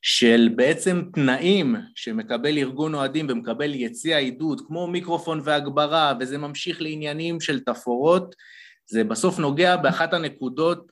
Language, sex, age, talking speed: Hebrew, male, 20-39, 120 wpm